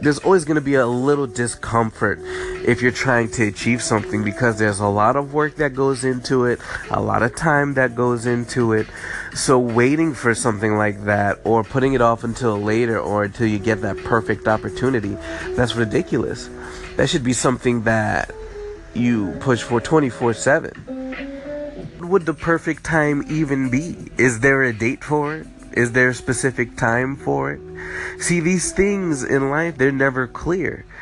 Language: English